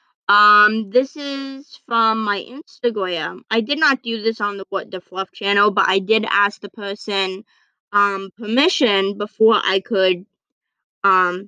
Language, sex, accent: English, female, American